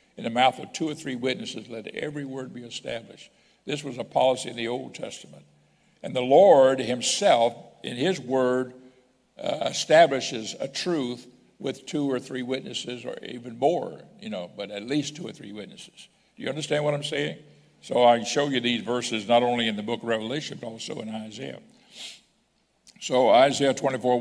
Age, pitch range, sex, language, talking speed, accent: 60-79, 120-135 Hz, male, English, 185 wpm, American